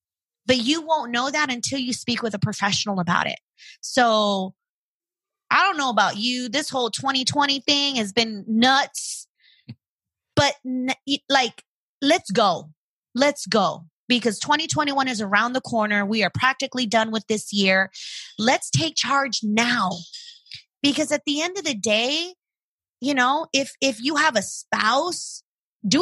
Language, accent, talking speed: English, American, 150 wpm